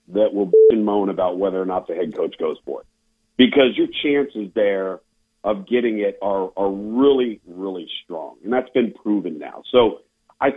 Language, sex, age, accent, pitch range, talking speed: English, male, 50-69, American, 105-135 Hz, 180 wpm